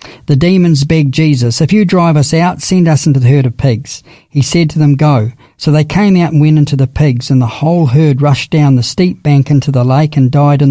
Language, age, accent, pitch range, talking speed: English, 50-69, Australian, 135-160 Hz, 250 wpm